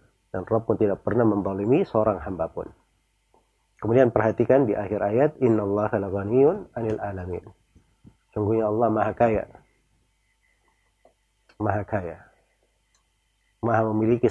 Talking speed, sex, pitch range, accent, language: 105 wpm, male, 100-115 Hz, native, Indonesian